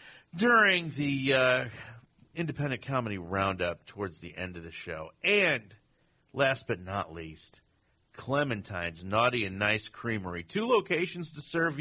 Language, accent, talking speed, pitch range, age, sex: English, American, 130 wpm, 95-135 Hz, 50-69, male